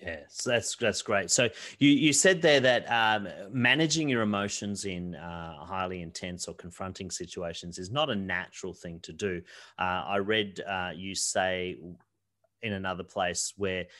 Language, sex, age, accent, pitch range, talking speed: English, male, 30-49, Australian, 90-105 Hz, 165 wpm